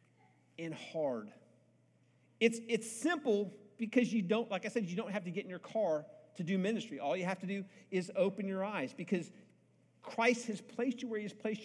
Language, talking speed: English, 195 wpm